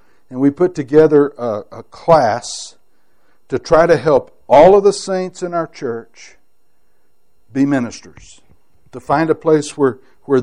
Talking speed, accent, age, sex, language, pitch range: 150 wpm, American, 60-79, male, English, 135-195 Hz